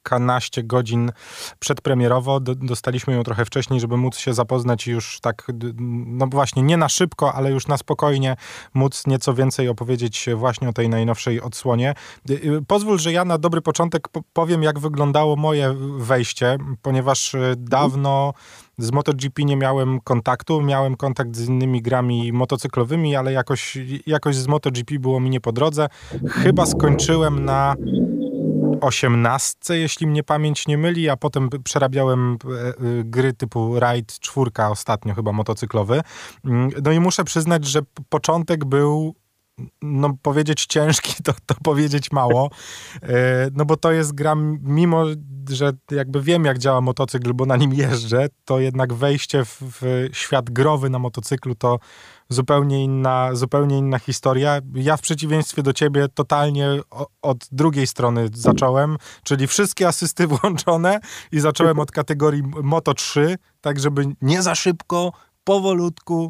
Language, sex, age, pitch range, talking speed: Polish, male, 20-39, 125-150 Hz, 140 wpm